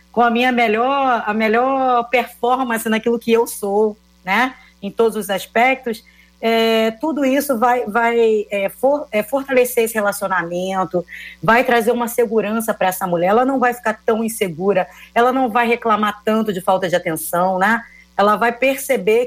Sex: female